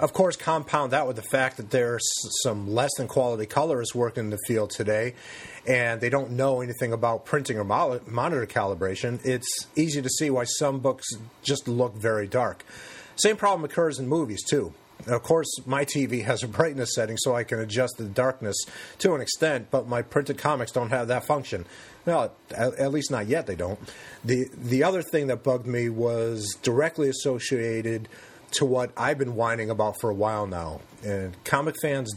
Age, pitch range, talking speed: 30-49, 115-140 Hz, 185 wpm